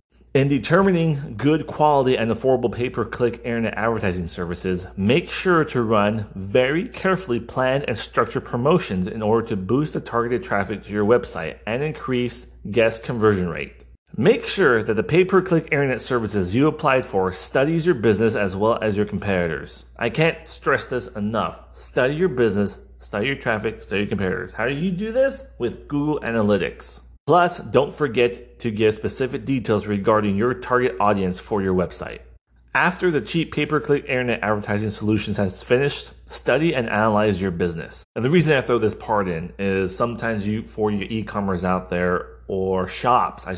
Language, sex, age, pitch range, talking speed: English, male, 30-49, 100-130 Hz, 170 wpm